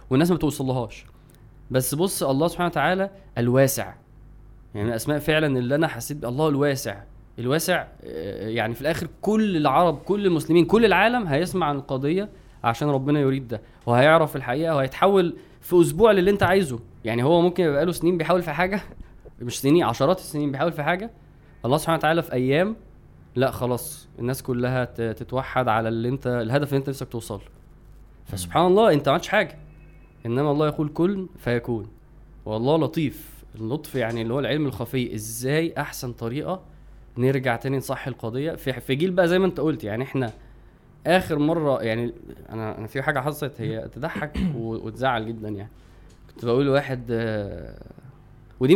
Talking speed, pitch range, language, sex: 155 wpm, 120-160 Hz, Arabic, male